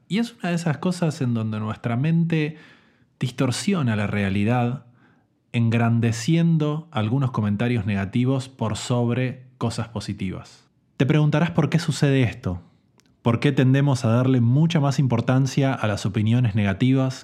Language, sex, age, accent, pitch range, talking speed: Spanish, male, 20-39, Argentinian, 110-140 Hz, 135 wpm